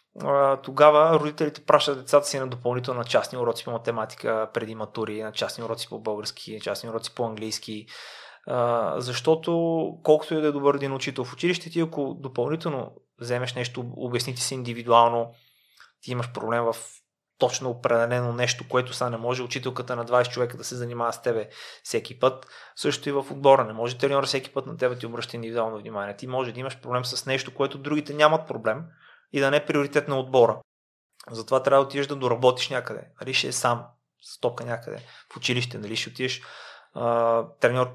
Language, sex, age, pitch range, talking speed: Bulgarian, male, 30-49, 120-140 Hz, 185 wpm